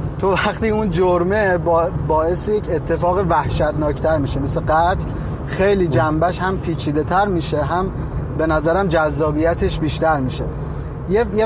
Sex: male